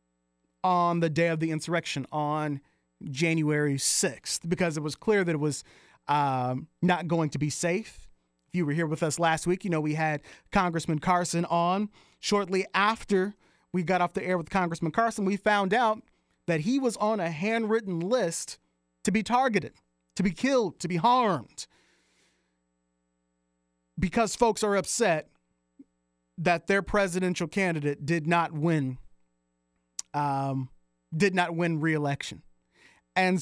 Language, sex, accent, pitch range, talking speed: English, male, American, 150-190 Hz, 150 wpm